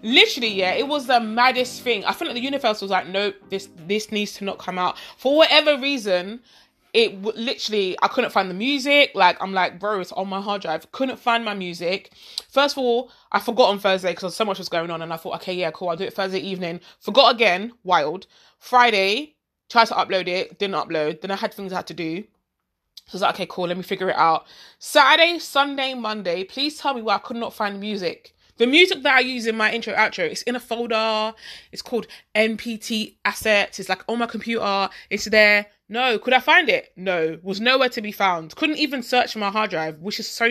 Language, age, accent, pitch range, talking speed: English, 20-39, British, 190-255 Hz, 235 wpm